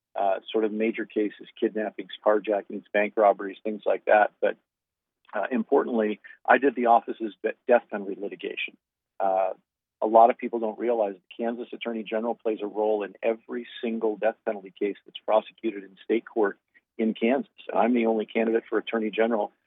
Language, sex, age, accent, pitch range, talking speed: English, male, 50-69, American, 105-115 Hz, 170 wpm